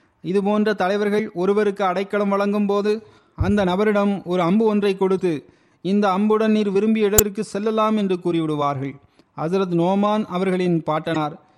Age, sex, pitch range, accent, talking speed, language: 30-49, male, 165-210 Hz, native, 130 wpm, Tamil